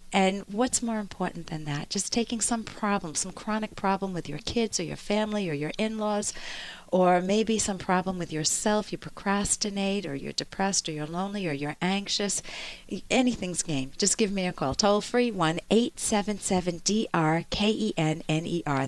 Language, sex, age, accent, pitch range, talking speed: English, female, 50-69, American, 175-230 Hz, 155 wpm